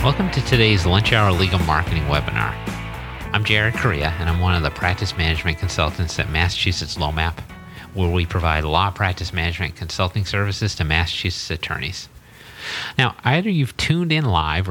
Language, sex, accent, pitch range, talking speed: English, male, American, 85-110 Hz, 160 wpm